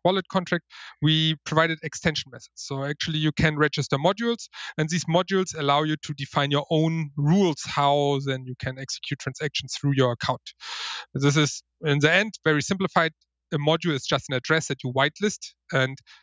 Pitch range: 140-165 Hz